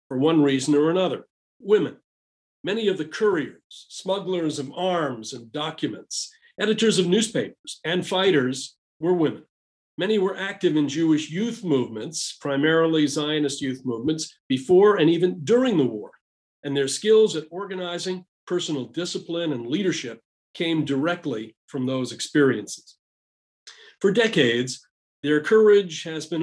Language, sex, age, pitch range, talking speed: English, male, 50-69, 140-190 Hz, 135 wpm